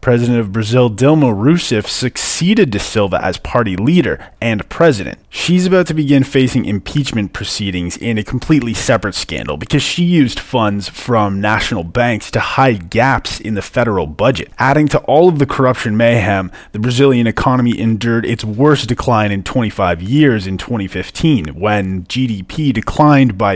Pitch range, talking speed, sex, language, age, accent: 105-145 Hz, 160 wpm, male, English, 20-39, American